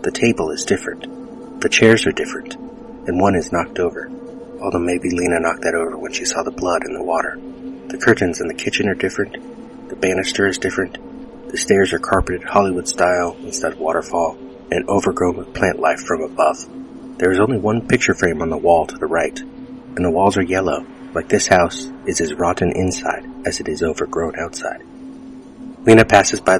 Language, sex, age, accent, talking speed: English, male, 30-49, American, 190 wpm